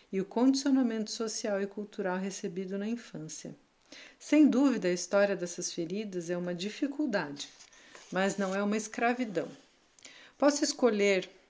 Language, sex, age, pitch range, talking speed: Portuguese, female, 50-69, 180-225 Hz, 130 wpm